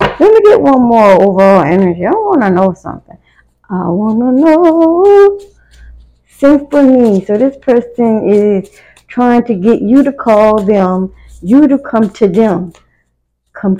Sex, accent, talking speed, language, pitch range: female, American, 150 wpm, English, 180-235 Hz